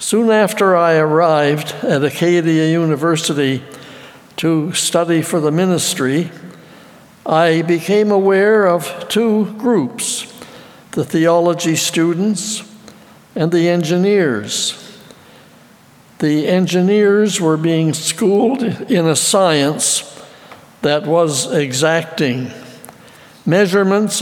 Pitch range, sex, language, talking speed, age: 160-195 Hz, male, English, 90 wpm, 60-79